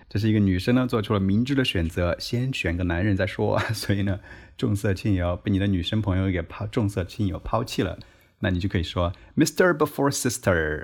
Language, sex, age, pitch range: Chinese, male, 30-49, 90-120 Hz